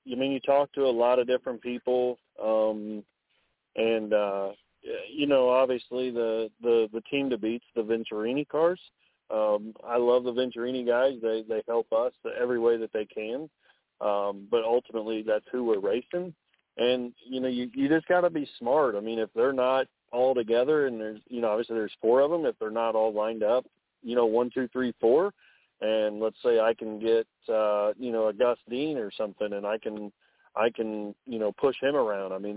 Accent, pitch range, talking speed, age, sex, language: American, 110-125 Hz, 210 wpm, 40-59, male, English